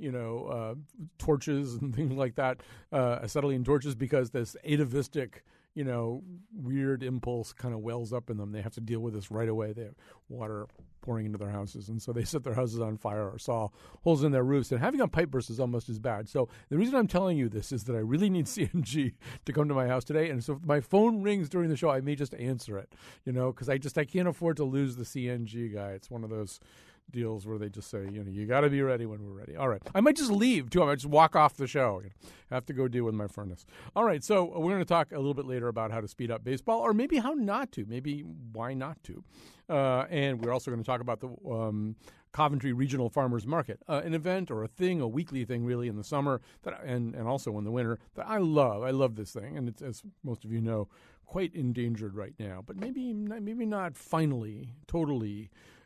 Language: English